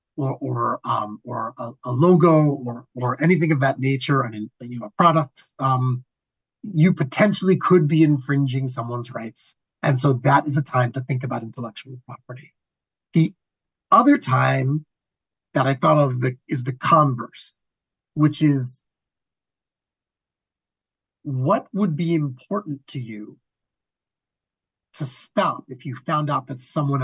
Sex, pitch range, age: male, 125-150 Hz, 30-49